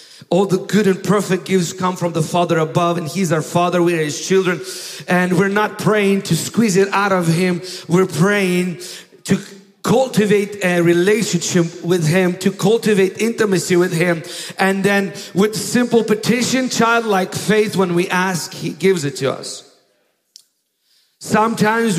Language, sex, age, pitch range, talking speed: English, male, 50-69, 175-210 Hz, 155 wpm